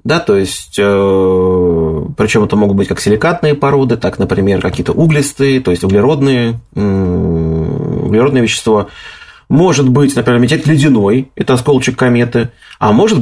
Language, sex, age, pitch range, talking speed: Russian, male, 30-49, 110-150 Hz, 125 wpm